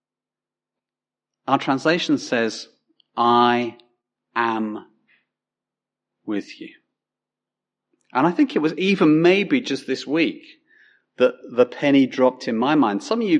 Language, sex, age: English, male, 40-59